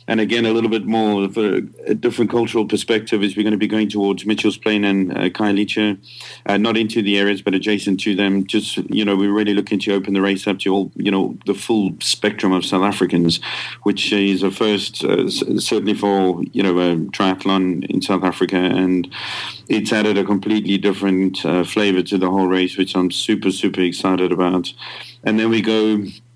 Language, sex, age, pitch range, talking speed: English, male, 40-59, 95-110 Hz, 205 wpm